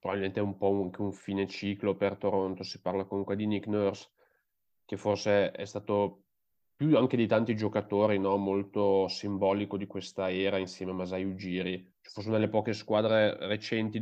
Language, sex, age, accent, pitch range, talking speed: Italian, male, 20-39, native, 100-105 Hz, 180 wpm